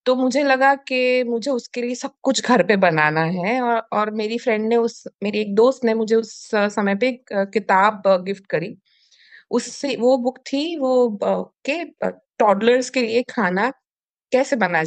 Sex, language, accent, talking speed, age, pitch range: female, Hindi, native, 70 wpm, 20-39, 195-255 Hz